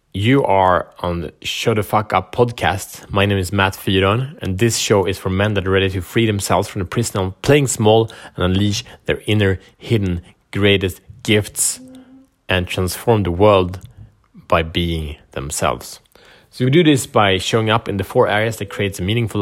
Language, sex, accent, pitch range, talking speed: Swedish, male, Norwegian, 95-115 Hz, 190 wpm